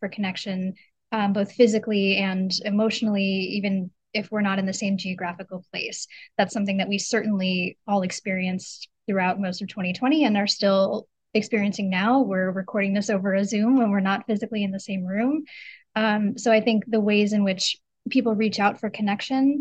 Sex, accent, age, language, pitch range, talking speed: female, American, 10-29, English, 200-230 Hz, 180 wpm